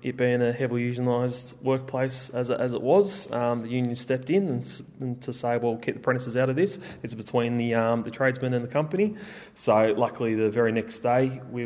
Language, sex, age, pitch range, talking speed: English, male, 20-39, 115-130 Hz, 215 wpm